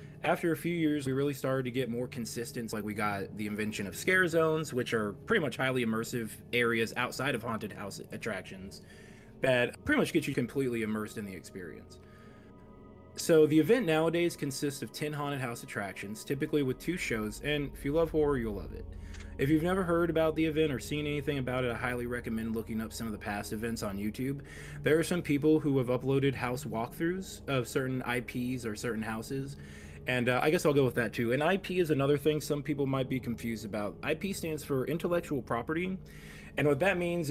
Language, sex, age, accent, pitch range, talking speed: English, male, 20-39, American, 115-155 Hz, 210 wpm